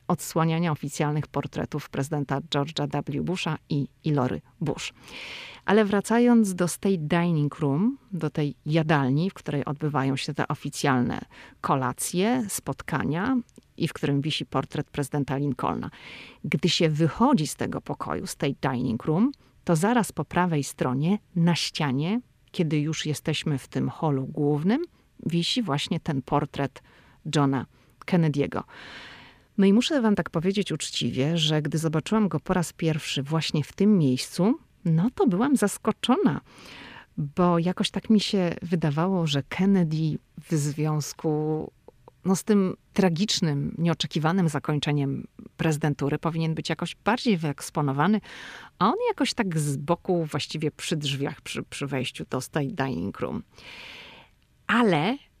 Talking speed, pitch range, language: 135 wpm, 145-190 Hz, Polish